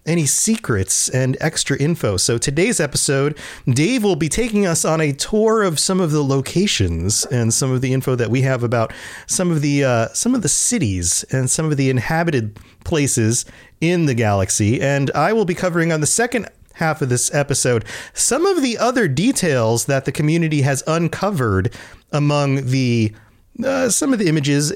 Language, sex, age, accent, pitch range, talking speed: English, male, 30-49, American, 115-160 Hz, 185 wpm